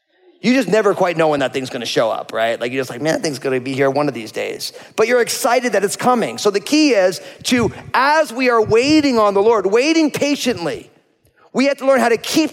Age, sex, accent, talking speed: 30-49, male, American, 265 wpm